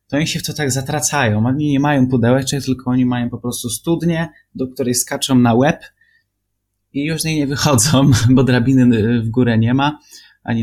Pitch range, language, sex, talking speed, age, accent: 110-135 Hz, Polish, male, 185 wpm, 20-39, native